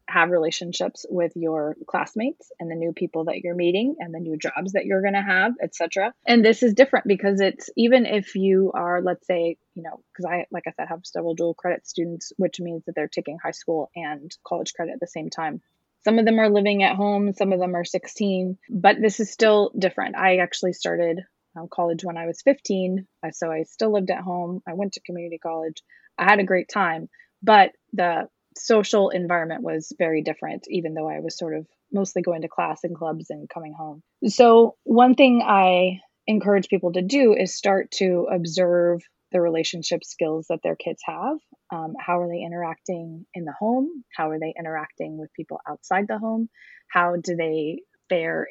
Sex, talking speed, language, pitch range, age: female, 205 wpm, English, 165-205 Hz, 20-39